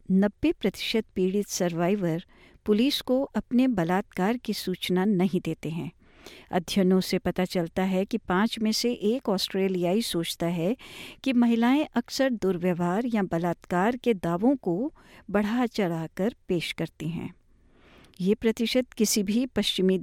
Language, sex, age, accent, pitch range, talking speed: Hindi, female, 50-69, native, 185-240 Hz, 140 wpm